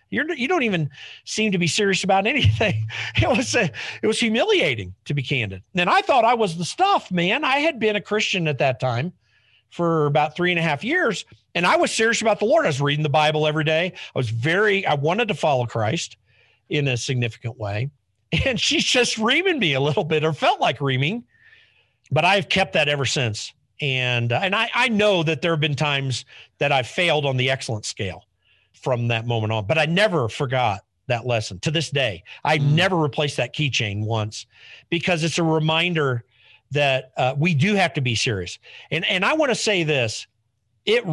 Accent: American